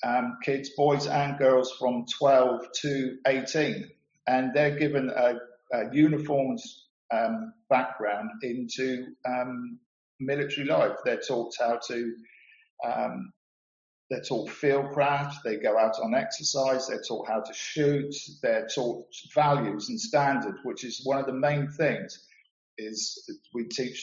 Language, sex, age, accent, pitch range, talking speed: English, male, 50-69, British, 125-150 Hz, 135 wpm